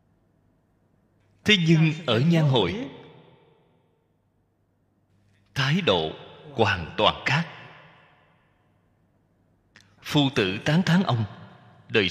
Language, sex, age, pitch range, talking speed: Vietnamese, male, 20-39, 100-155 Hz, 80 wpm